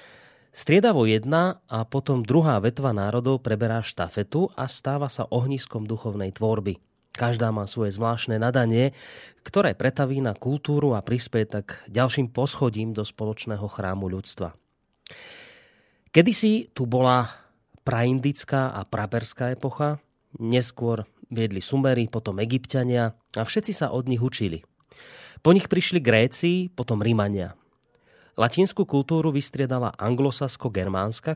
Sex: male